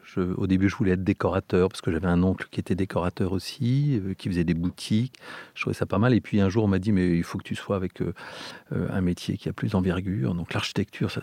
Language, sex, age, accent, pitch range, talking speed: French, male, 40-59, French, 90-110 Hz, 265 wpm